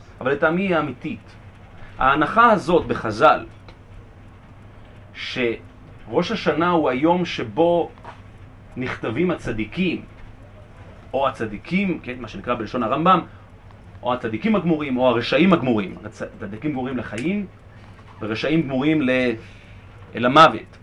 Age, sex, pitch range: 40-59, male, 100-130 Hz